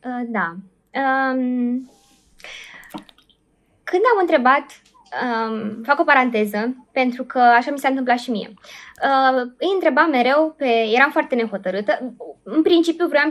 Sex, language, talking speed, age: female, Romanian, 125 wpm, 20-39